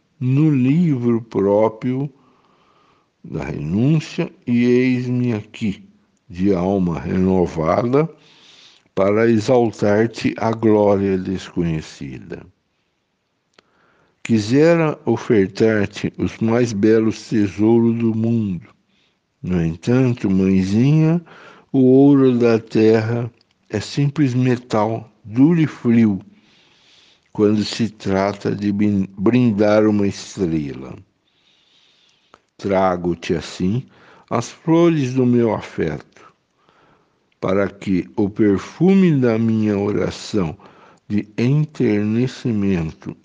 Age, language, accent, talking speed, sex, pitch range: 60-79, Portuguese, Brazilian, 85 wpm, male, 100-130 Hz